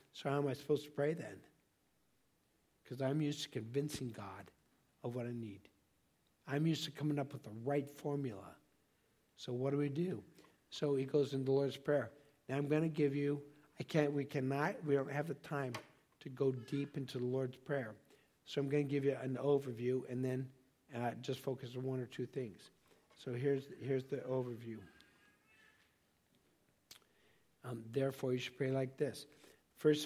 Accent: American